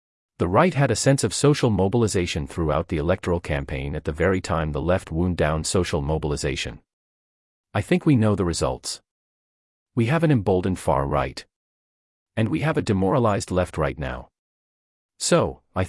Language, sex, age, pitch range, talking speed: English, male, 40-59, 75-120 Hz, 165 wpm